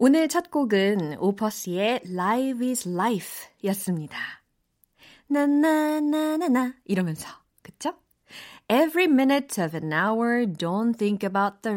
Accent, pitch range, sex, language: native, 180-265 Hz, female, Korean